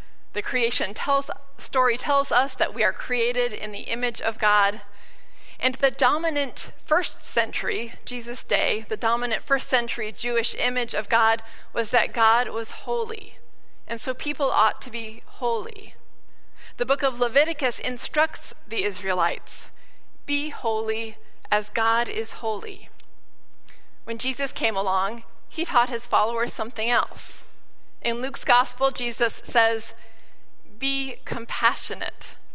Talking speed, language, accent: 135 wpm, English, American